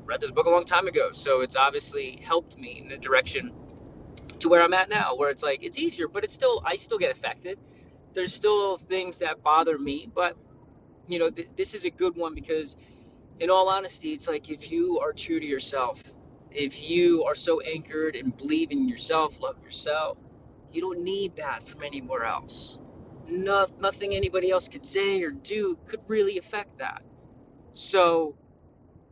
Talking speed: 180 wpm